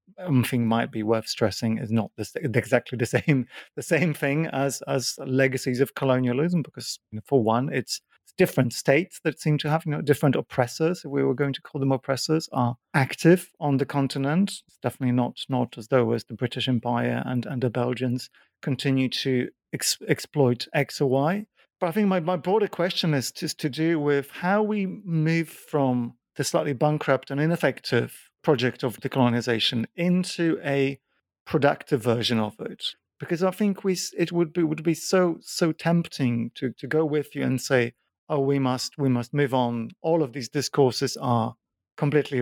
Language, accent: English, British